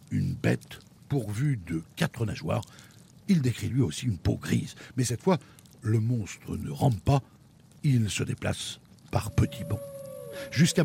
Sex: male